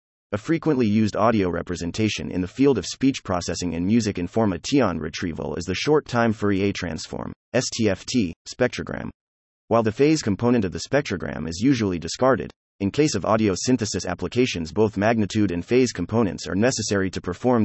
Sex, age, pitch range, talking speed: male, 30-49, 90-120 Hz, 160 wpm